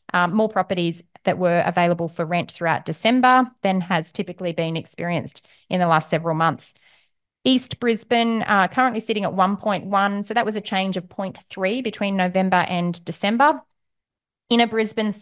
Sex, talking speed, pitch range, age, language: female, 170 wpm, 175-210 Hz, 30-49, English